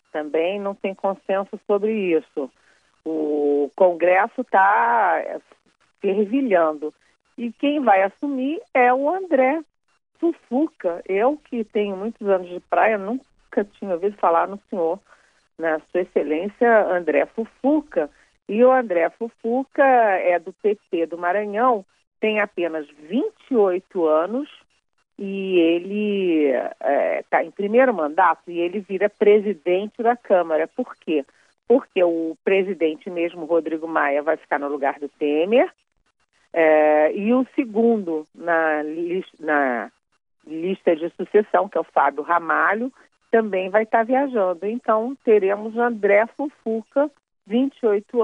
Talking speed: 120 wpm